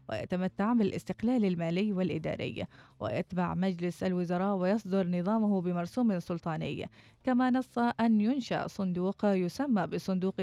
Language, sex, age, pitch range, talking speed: Arabic, female, 20-39, 180-210 Hz, 105 wpm